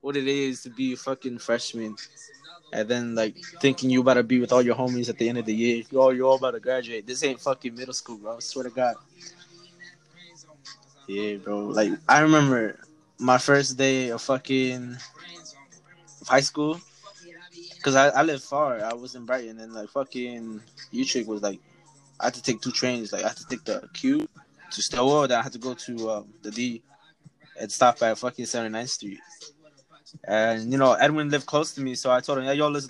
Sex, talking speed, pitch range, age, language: male, 210 wpm, 125-150 Hz, 20-39, English